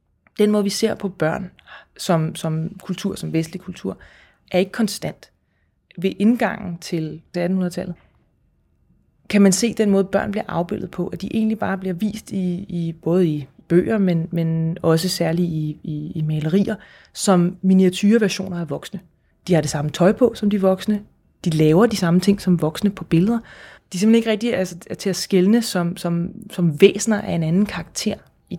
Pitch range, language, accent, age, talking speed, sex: 170-215 Hz, Danish, native, 30-49, 185 wpm, female